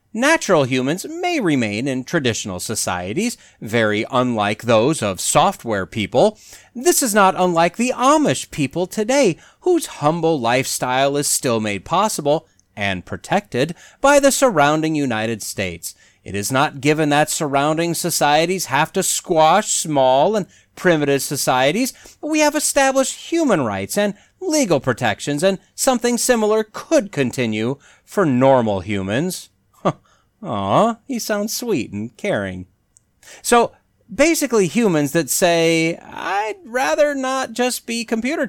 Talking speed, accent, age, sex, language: 130 wpm, American, 40-59, male, English